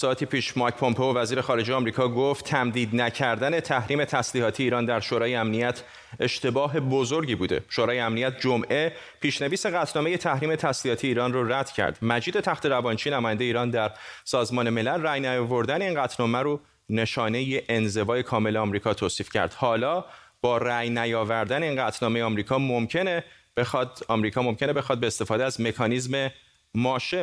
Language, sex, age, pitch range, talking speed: Persian, male, 30-49, 120-150 Hz, 145 wpm